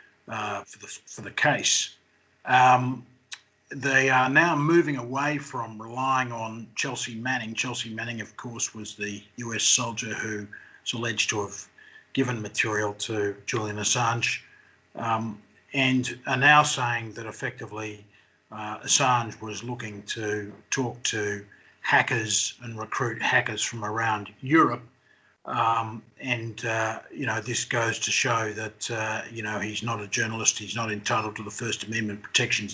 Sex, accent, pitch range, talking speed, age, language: male, Australian, 110-125 Hz, 150 wpm, 50-69, English